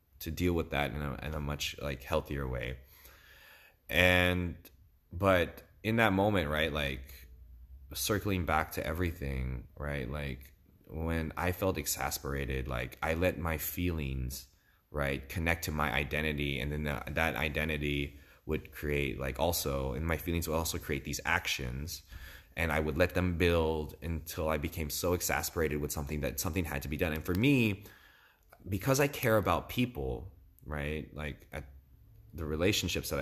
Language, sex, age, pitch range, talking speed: English, male, 20-39, 70-90 Hz, 155 wpm